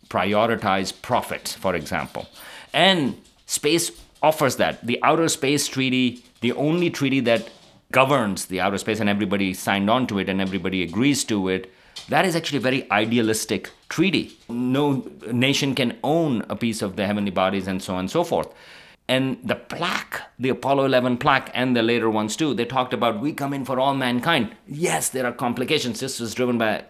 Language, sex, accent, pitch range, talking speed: English, male, Indian, 105-130 Hz, 185 wpm